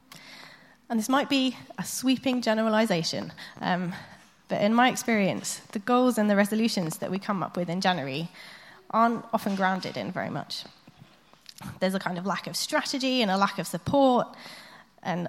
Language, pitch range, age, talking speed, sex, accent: English, 185-235 Hz, 20-39, 170 wpm, female, British